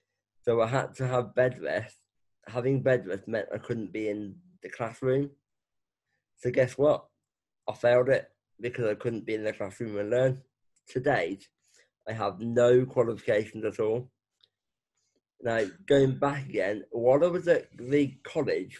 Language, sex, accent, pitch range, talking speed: English, male, British, 110-130 Hz, 160 wpm